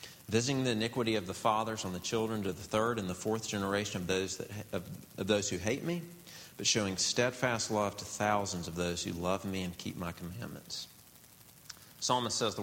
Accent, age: American, 40-59